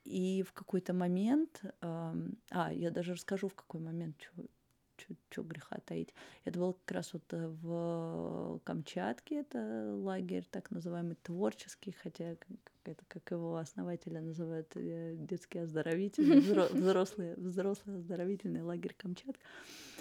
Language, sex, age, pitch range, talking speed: Russian, female, 30-49, 165-195 Hz, 115 wpm